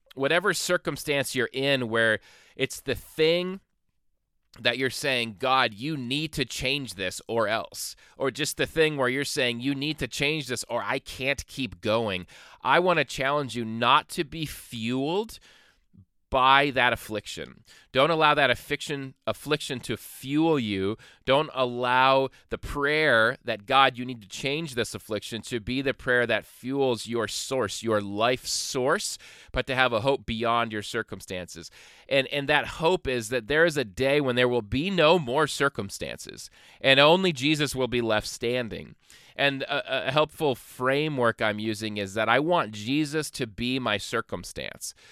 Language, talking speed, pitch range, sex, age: English, 170 wpm, 115-145 Hz, male, 30-49